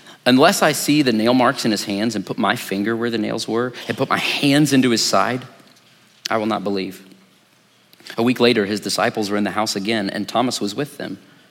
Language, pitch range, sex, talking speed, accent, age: English, 95-120 Hz, male, 225 wpm, American, 40-59